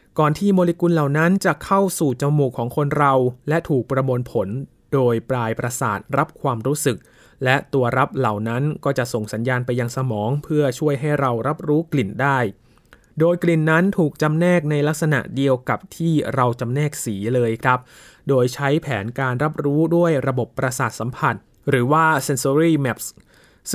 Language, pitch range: Thai, 125-155 Hz